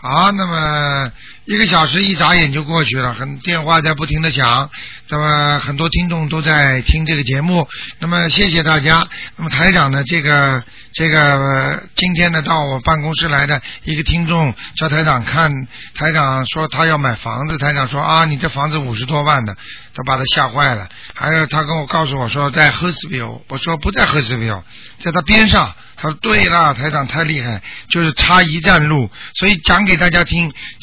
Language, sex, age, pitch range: Chinese, male, 50-69, 140-170 Hz